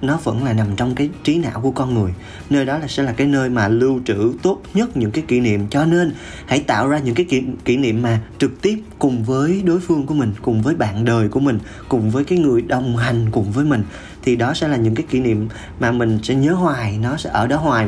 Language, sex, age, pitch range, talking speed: Vietnamese, male, 20-39, 110-145 Hz, 265 wpm